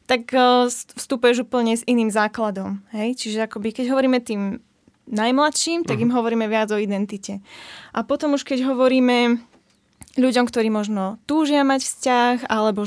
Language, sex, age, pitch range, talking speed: Slovak, female, 10-29, 215-245 Hz, 145 wpm